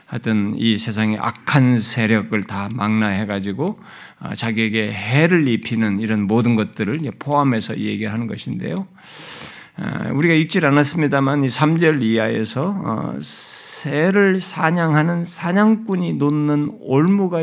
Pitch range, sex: 115-165 Hz, male